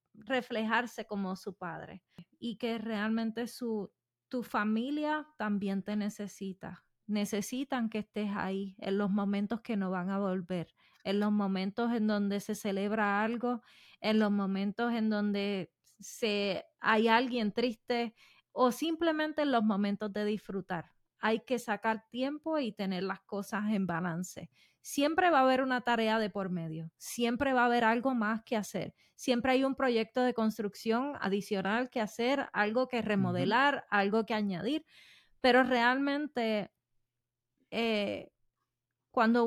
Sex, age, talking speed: female, 20-39, 140 wpm